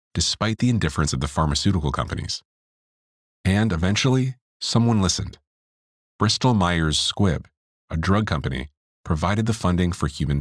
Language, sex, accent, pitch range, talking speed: English, male, American, 75-105 Hz, 125 wpm